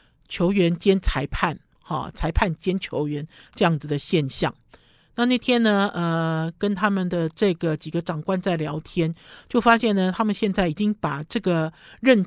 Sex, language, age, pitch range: male, Chinese, 50-69, 160-210 Hz